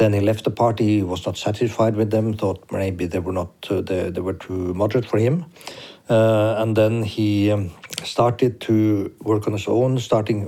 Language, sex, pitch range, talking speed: Czech, male, 95-110 Hz, 205 wpm